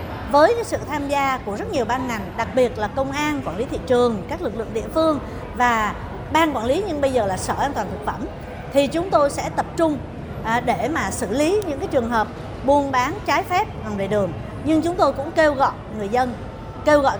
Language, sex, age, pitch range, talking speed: Vietnamese, female, 60-79, 260-325 Hz, 235 wpm